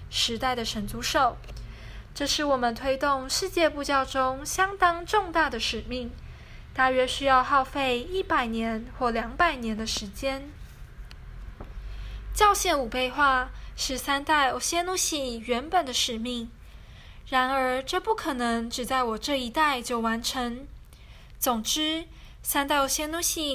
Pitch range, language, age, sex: 240-300 Hz, Chinese, 10-29, female